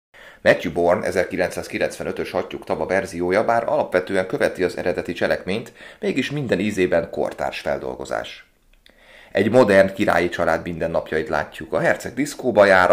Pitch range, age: 85-110 Hz, 30-49